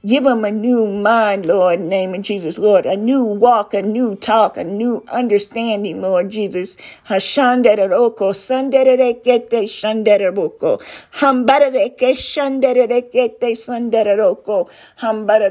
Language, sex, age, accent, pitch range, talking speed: English, female, 50-69, American, 200-245 Hz, 145 wpm